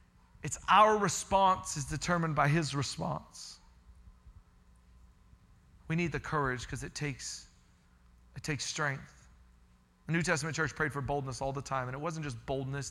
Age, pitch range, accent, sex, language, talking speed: 30-49, 95-155 Hz, American, male, English, 155 wpm